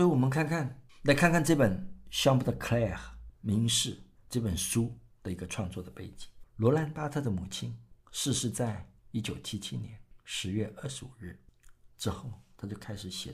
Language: Chinese